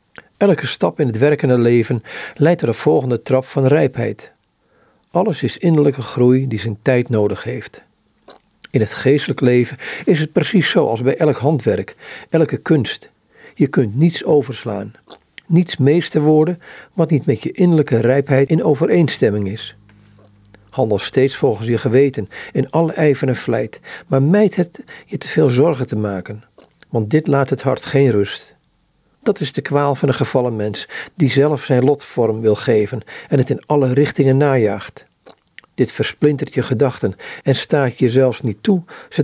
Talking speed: 165 wpm